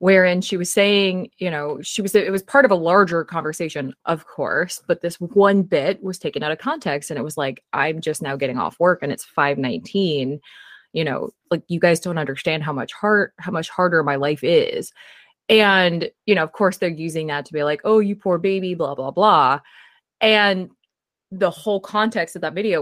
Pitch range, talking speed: 150-195 Hz, 210 wpm